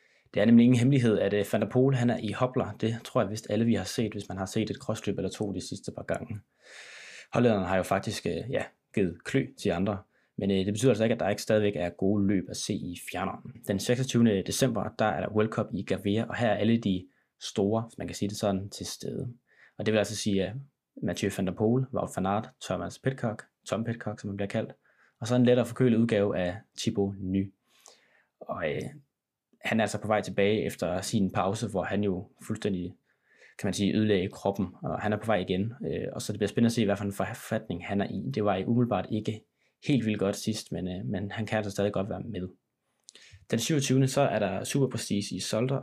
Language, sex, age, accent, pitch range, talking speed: Danish, male, 20-39, native, 100-120 Hz, 225 wpm